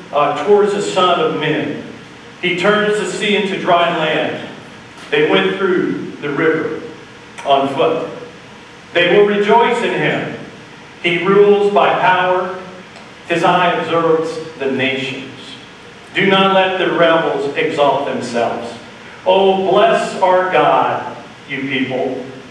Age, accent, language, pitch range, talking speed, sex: 50-69, American, English, 145-190 Hz, 125 wpm, male